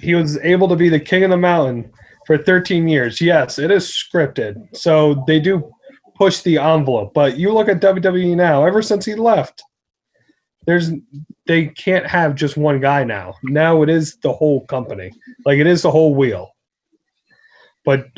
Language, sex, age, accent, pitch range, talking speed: English, male, 30-49, American, 145-185 Hz, 180 wpm